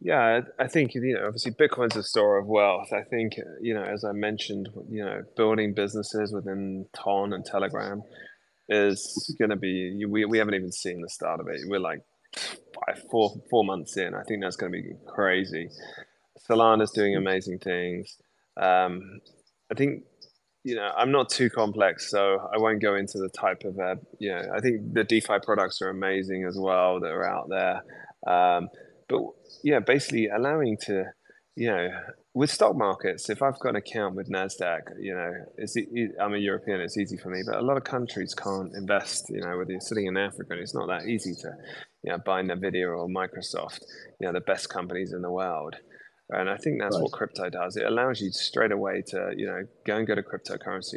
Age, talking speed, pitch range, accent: 20-39, 200 wpm, 95-110 Hz, British